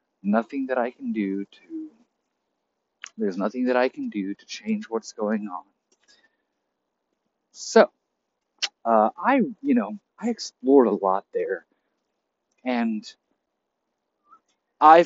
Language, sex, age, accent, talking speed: English, male, 30-49, American, 115 wpm